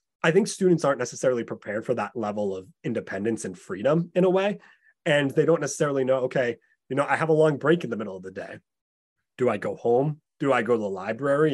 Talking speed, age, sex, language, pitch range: 235 wpm, 30-49, male, English, 110-155 Hz